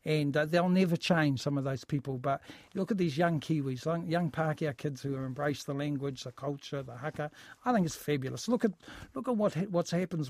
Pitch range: 150-190 Hz